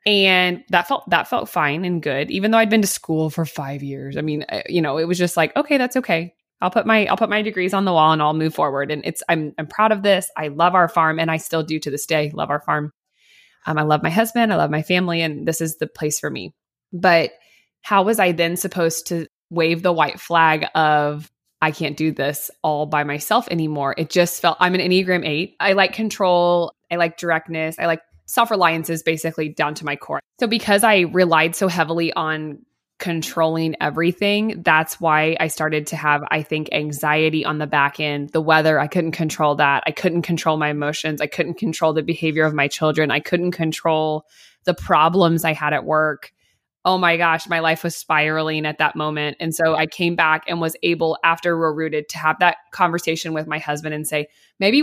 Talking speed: 220 wpm